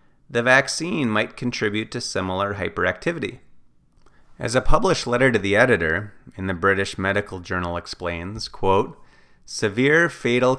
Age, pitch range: 30-49, 95-120 Hz